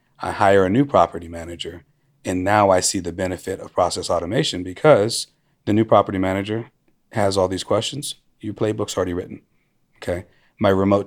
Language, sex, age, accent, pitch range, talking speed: English, male, 30-49, American, 90-105 Hz, 170 wpm